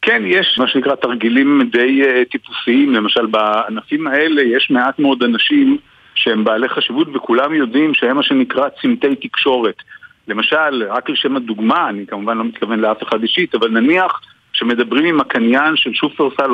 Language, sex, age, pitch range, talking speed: Hebrew, male, 50-69, 120-190 Hz, 155 wpm